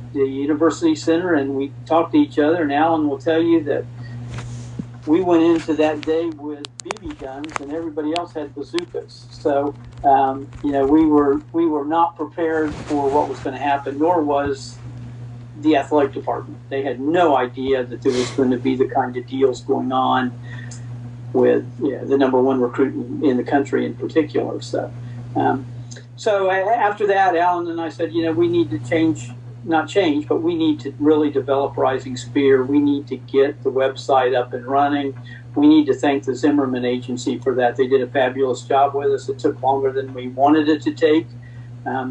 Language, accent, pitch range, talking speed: English, American, 125-155 Hz, 195 wpm